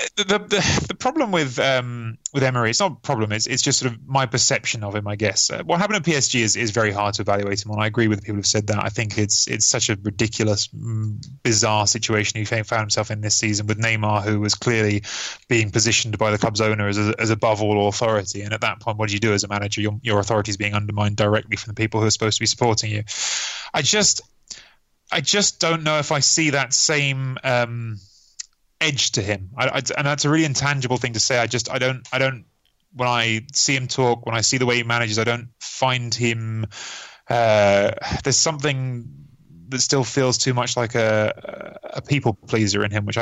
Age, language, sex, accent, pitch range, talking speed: 20-39, English, male, British, 105-130 Hz, 230 wpm